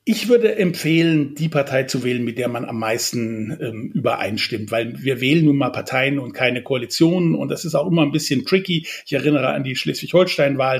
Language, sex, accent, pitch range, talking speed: German, male, German, 130-155 Hz, 200 wpm